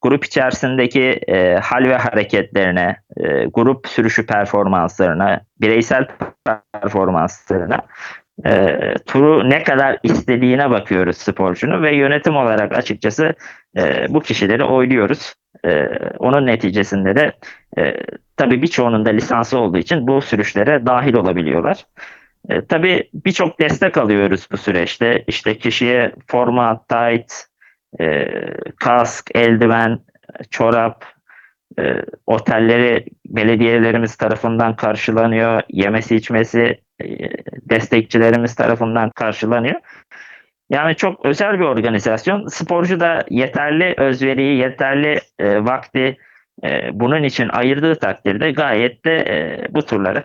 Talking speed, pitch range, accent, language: 105 wpm, 110-130 Hz, native, Turkish